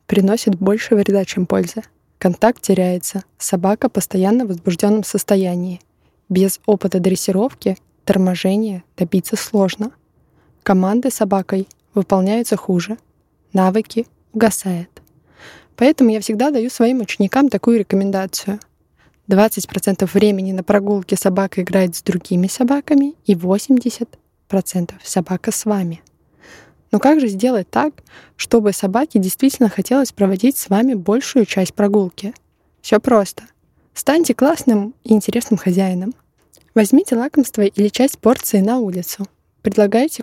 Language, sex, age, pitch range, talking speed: Russian, female, 20-39, 190-230 Hz, 115 wpm